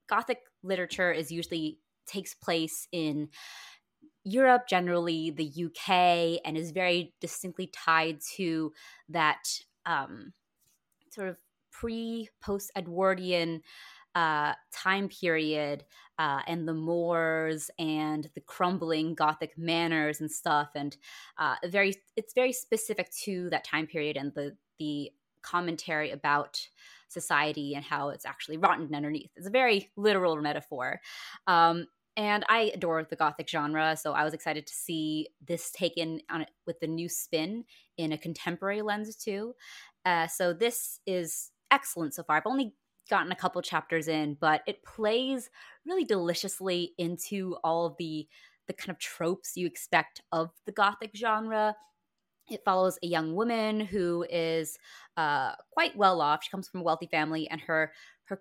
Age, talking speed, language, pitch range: 20-39, 150 wpm, English, 155-195 Hz